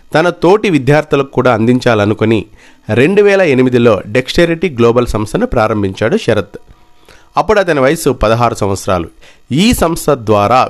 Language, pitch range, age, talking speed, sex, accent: Telugu, 110-150 Hz, 50-69, 120 wpm, male, native